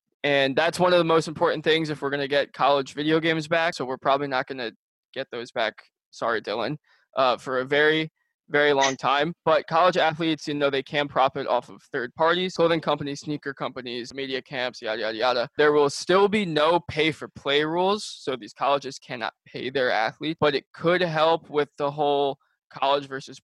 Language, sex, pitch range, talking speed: English, male, 135-160 Hz, 205 wpm